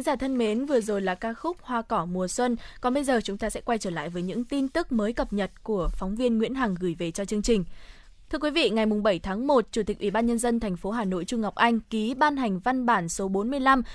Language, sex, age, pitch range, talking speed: Vietnamese, female, 20-39, 200-265 Hz, 280 wpm